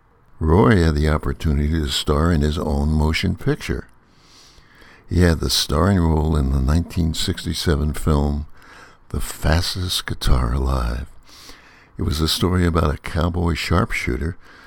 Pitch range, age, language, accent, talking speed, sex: 70-90 Hz, 60-79, English, American, 130 wpm, male